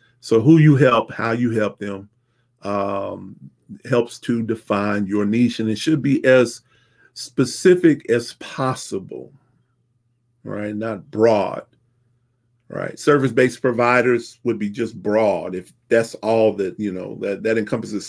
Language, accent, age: English, American, 40-59